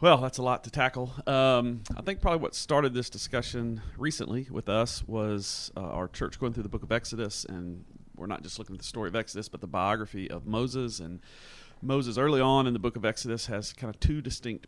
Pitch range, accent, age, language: 95-120 Hz, American, 40-59, English